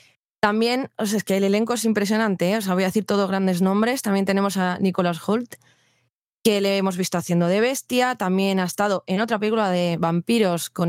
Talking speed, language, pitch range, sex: 215 wpm, Spanish, 180-220 Hz, female